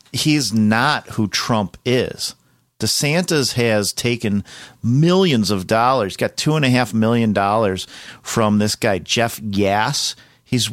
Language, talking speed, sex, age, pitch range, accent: English, 135 wpm, male, 40-59, 100-120 Hz, American